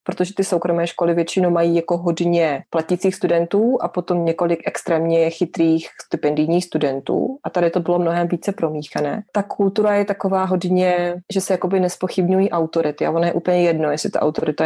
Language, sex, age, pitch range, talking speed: Czech, female, 20-39, 160-190 Hz, 170 wpm